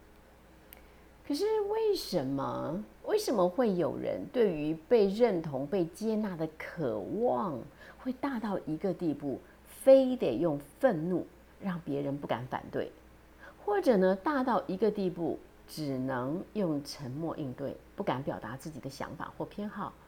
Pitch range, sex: 150-245 Hz, female